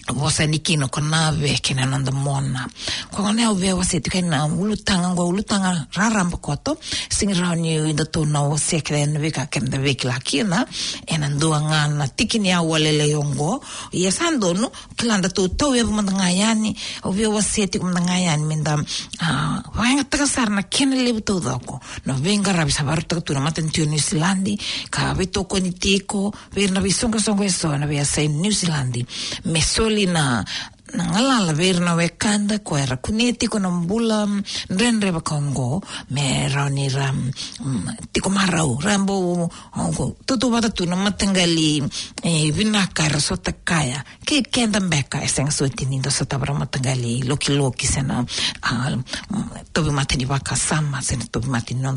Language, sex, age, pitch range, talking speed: English, female, 50-69, 140-200 Hz, 140 wpm